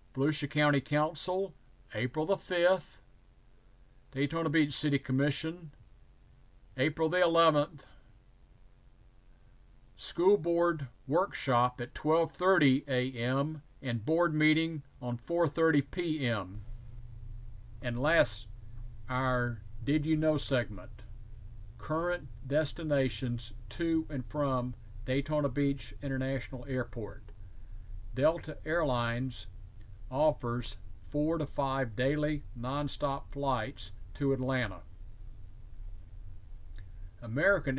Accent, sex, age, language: American, male, 50-69, English